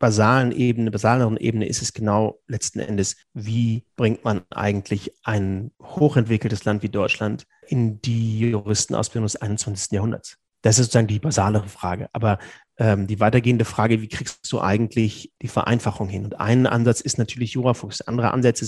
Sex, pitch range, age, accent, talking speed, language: male, 115-150 Hz, 30-49, German, 155 wpm, German